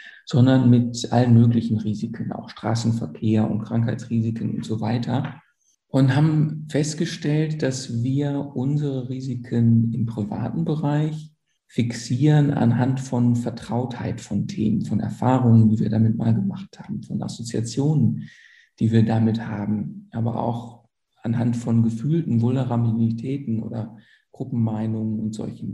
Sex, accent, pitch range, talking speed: male, German, 115-135 Hz, 120 wpm